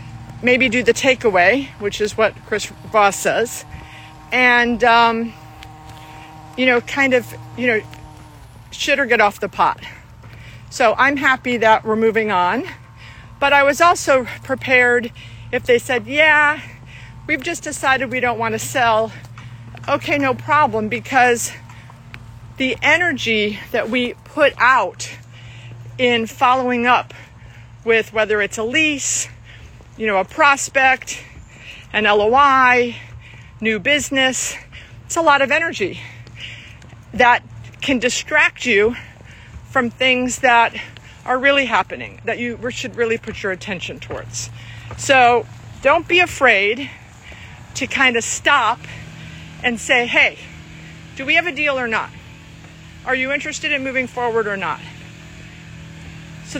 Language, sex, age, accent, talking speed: English, female, 50-69, American, 130 wpm